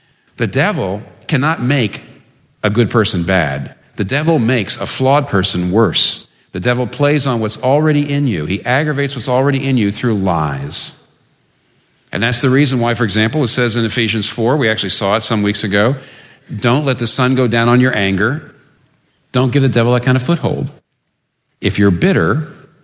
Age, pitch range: 50-69, 100-135 Hz